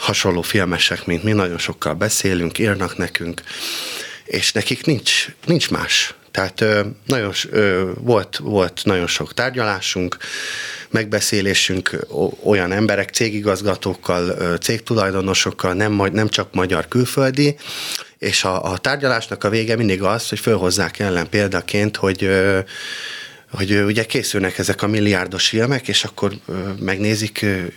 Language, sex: Hungarian, male